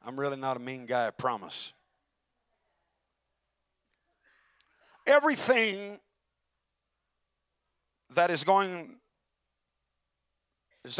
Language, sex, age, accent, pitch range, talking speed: English, male, 50-69, American, 125-165 Hz, 70 wpm